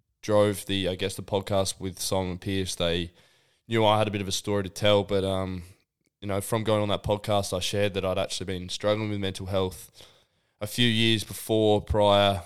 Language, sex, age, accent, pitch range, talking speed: English, male, 20-39, Australian, 90-105 Hz, 210 wpm